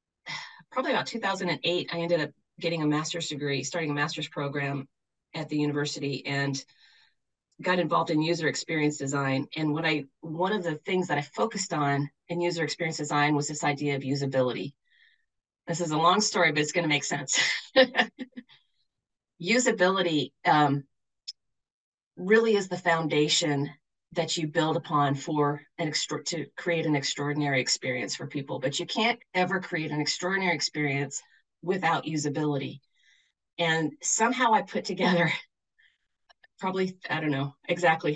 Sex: female